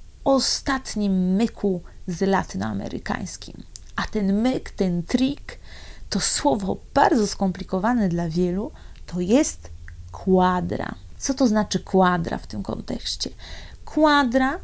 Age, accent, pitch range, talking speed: 30-49, native, 180-235 Hz, 105 wpm